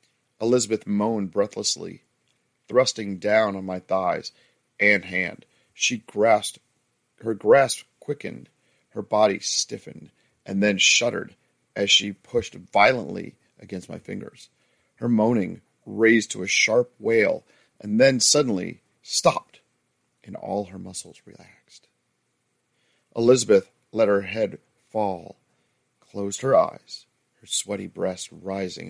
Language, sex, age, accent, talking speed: English, male, 40-59, American, 115 wpm